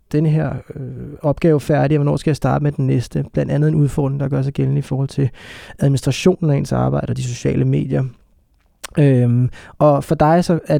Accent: native